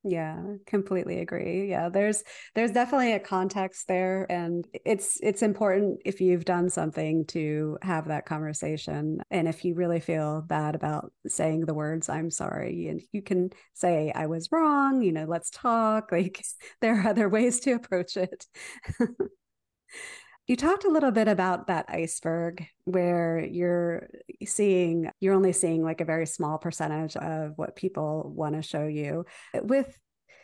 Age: 40-59